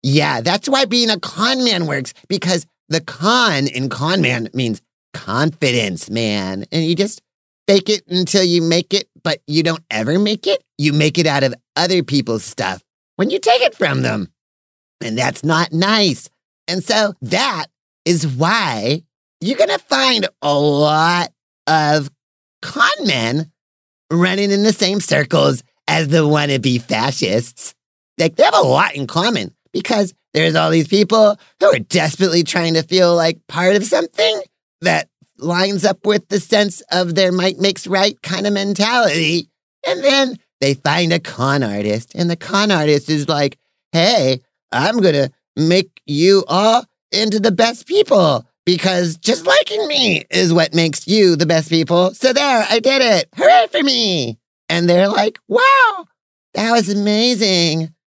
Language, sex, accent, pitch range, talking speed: English, male, American, 150-205 Hz, 160 wpm